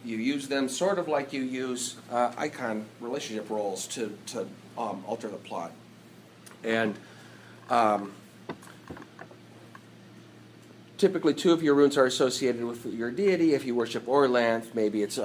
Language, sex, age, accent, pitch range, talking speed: English, male, 40-59, American, 110-135 Hz, 140 wpm